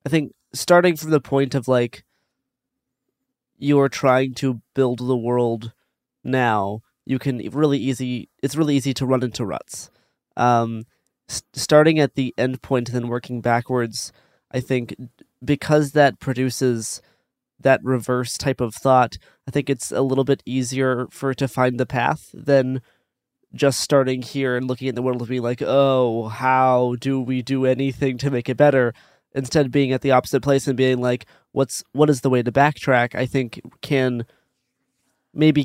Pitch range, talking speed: 120-135 Hz, 170 wpm